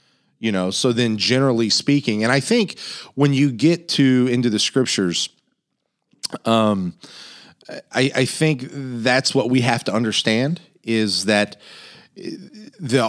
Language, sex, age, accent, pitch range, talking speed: English, male, 40-59, American, 105-135 Hz, 135 wpm